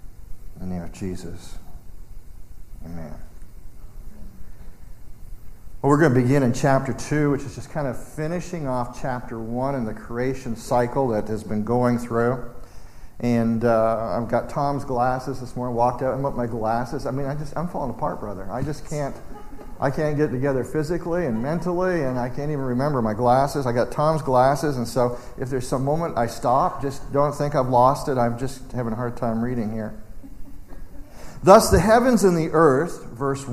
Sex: male